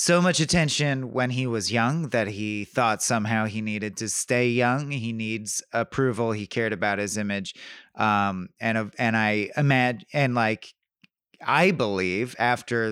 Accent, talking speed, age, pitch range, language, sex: American, 160 wpm, 30-49, 105-135 Hz, English, male